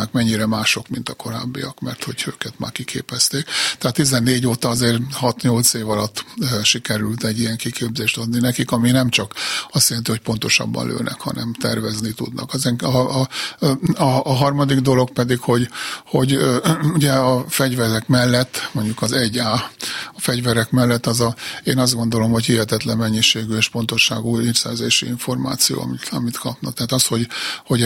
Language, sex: Hungarian, male